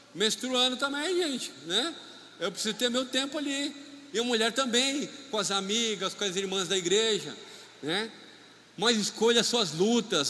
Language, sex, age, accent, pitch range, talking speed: Portuguese, male, 50-69, Brazilian, 195-240 Hz, 165 wpm